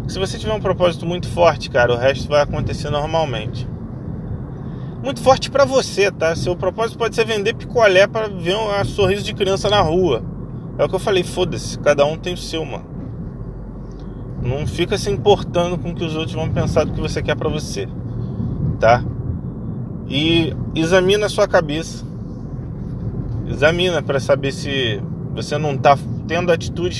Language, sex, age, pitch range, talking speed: Portuguese, male, 20-39, 135-180 Hz, 170 wpm